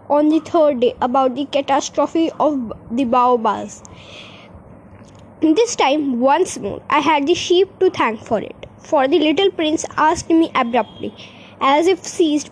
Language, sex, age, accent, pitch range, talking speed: Hindi, female, 20-39, native, 275-385 Hz, 160 wpm